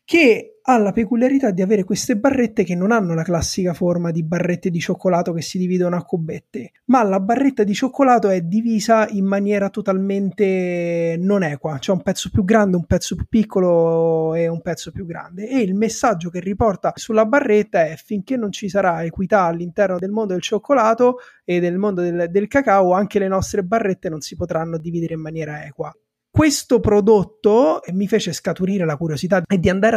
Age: 20-39